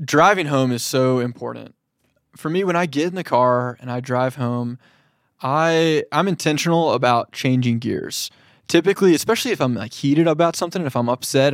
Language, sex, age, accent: English, male, 20-39, American